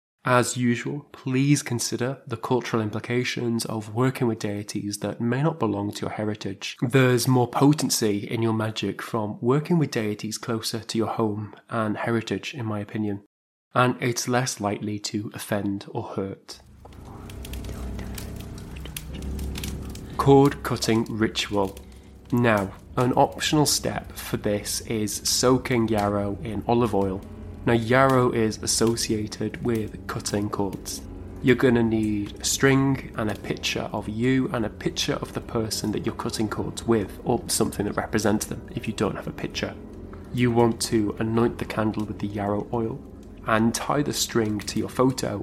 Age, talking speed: 20-39, 155 wpm